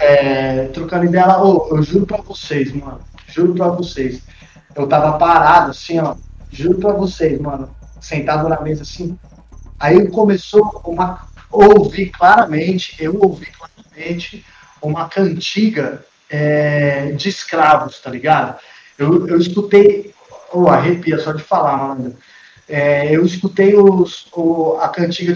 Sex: male